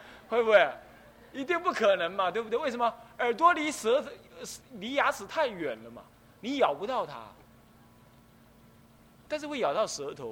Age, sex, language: 30-49, male, Chinese